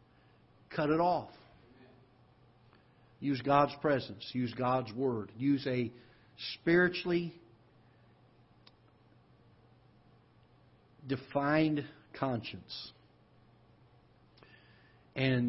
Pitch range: 115-140 Hz